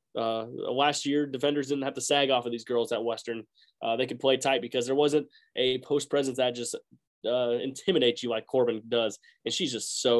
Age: 20-39